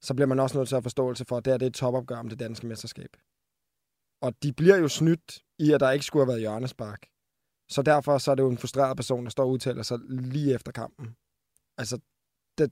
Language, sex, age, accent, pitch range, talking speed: Danish, male, 20-39, native, 120-140 Hz, 240 wpm